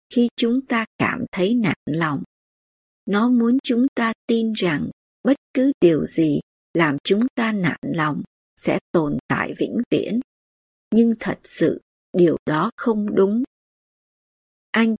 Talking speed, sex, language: 140 wpm, male, Vietnamese